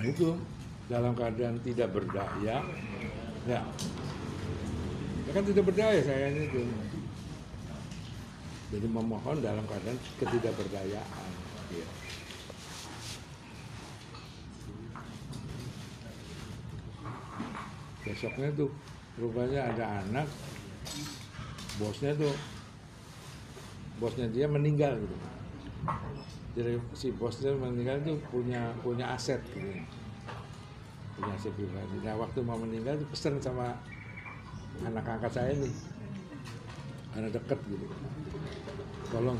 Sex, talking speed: male, 85 wpm